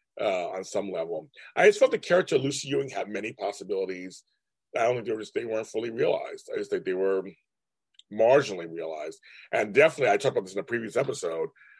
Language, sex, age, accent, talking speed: English, male, 40-59, American, 210 wpm